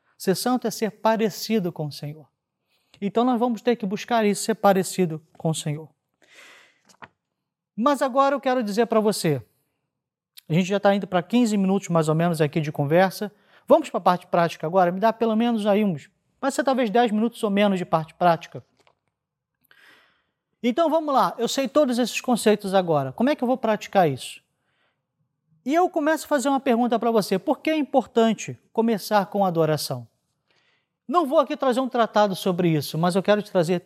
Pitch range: 170-240 Hz